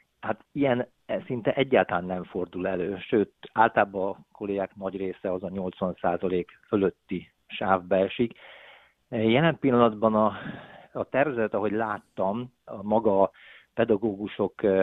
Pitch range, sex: 95-110 Hz, male